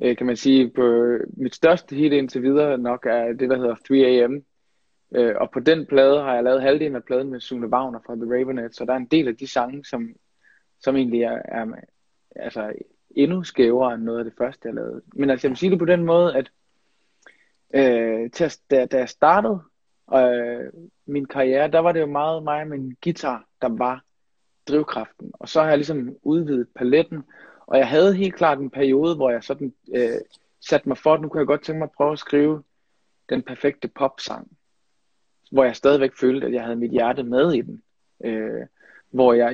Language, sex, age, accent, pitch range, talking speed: Danish, male, 20-39, native, 125-150 Hz, 200 wpm